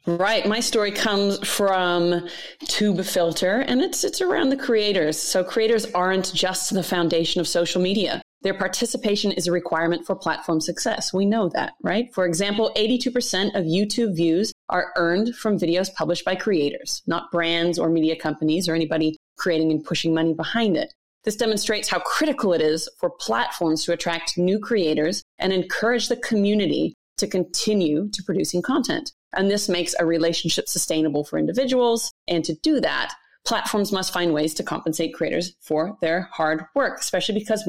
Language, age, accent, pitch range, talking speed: English, 30-49, American, 165-215 Hz, 165 wpm